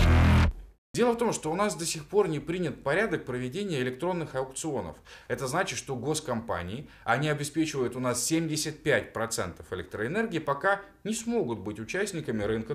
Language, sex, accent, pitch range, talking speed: Russian, male, native, 115-155 Hz, 145 wpm